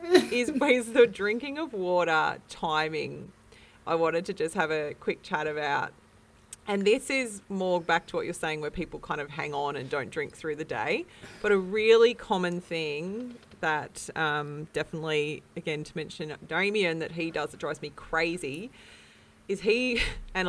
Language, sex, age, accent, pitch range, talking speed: English, female, 30-49, Australian, 165-215 Hz, 175 wpm